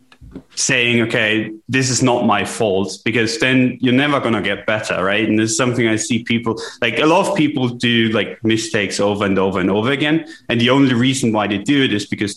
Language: English